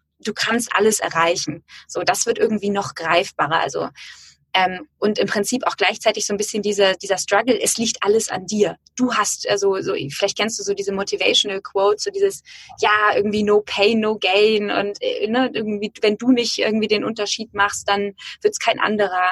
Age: 20-39